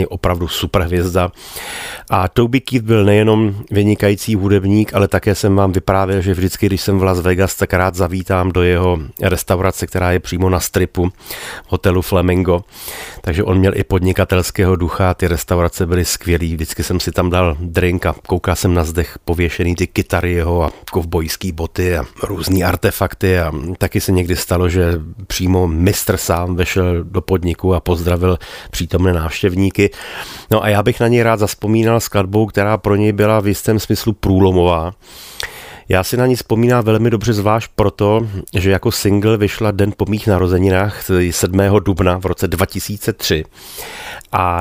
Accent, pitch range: native, 90-105 Hz